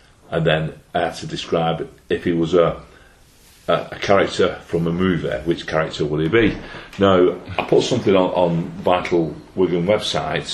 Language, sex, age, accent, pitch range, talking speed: English, male, 40-59, British, 80-100 Hz, 170 wpm